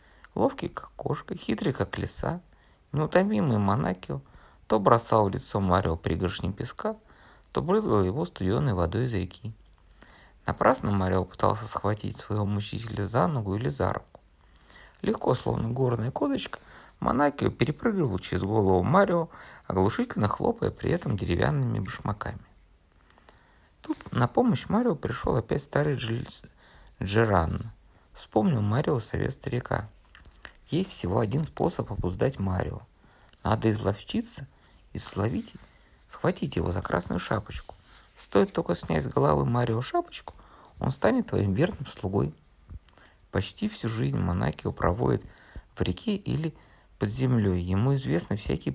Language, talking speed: Russian, 120 wpm